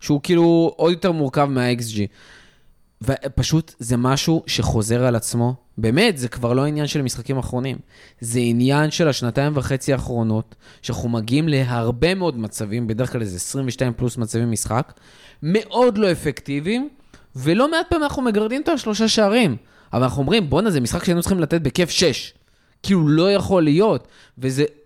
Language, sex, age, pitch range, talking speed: Hebrew, male, 20-39, 120-170 Hz, 160 wpm